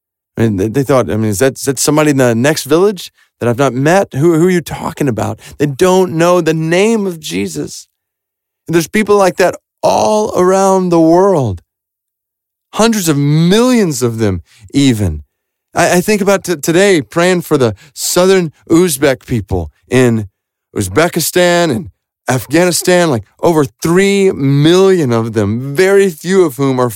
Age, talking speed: 30-49, 160 wpm